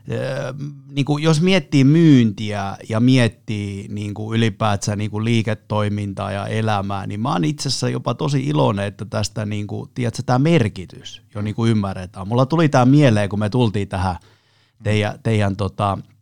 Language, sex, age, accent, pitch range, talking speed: Finnish, male, 30-49, native, 105-130 Hz, 145 wpm